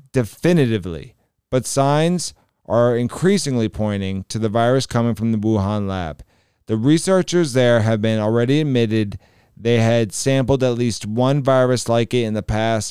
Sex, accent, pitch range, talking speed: male, American, 110-130 Hz, 155 wpm